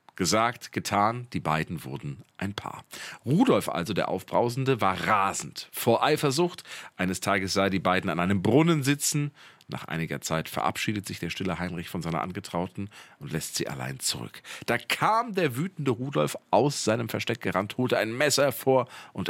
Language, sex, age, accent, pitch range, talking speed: German, male, 40-59, German, 100-140 Hz, 170 wpm